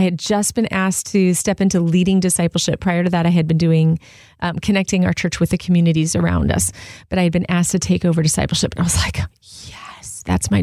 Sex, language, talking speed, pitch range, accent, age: female, English, 235 wpm, 165-200 Hz, American, 30-49